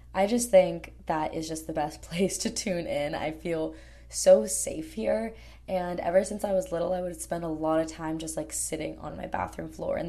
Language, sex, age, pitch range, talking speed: English, female, 20-39, 165-210 Hz, 225 wpm